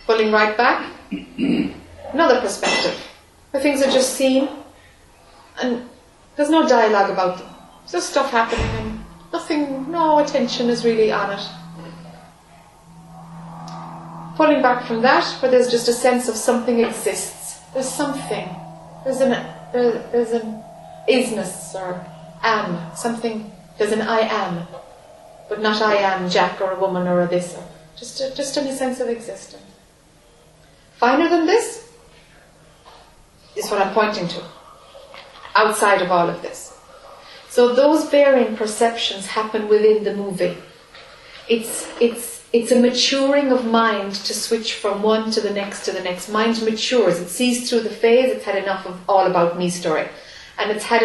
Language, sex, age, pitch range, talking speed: English, female, 30-49, 190-245 Hz, 150 wpm